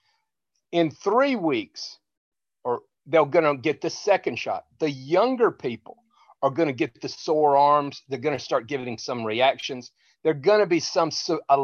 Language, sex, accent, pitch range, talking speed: English, male, American, 125-195 Hz, 175 wpm